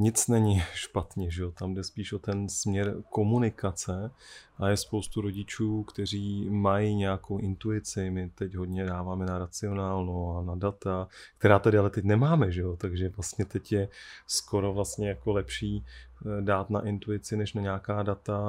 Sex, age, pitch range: male, 20-39, 95-110 Hz